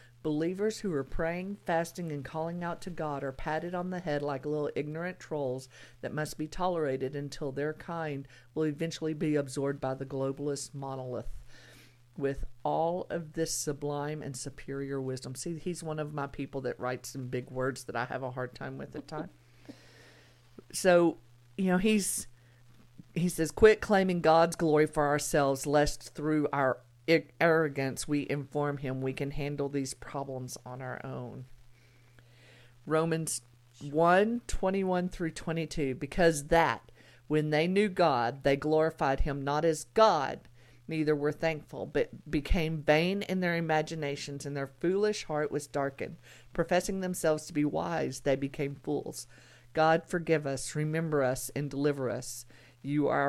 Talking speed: 160 wpm